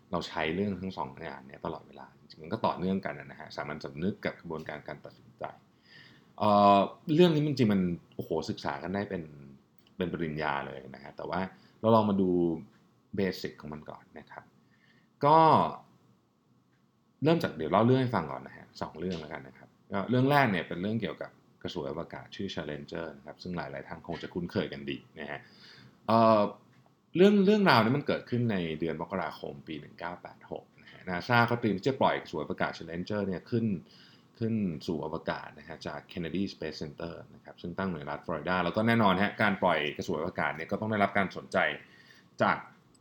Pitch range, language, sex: 80-105 Hz, Thai, male